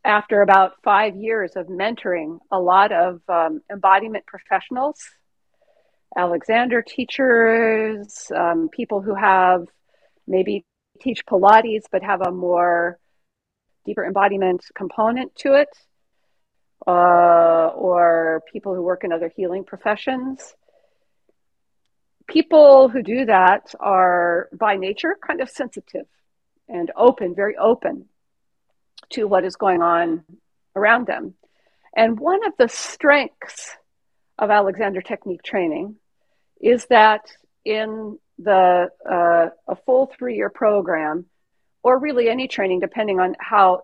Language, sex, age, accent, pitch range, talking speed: English, female, 40-59, American, 180-245 Hz, 115 wpm